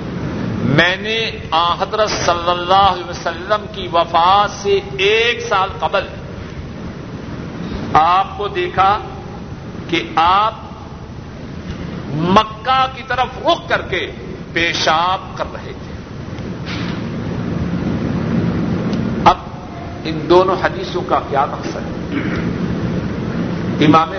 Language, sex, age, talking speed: Urdu, male, 60-79, 90 wpm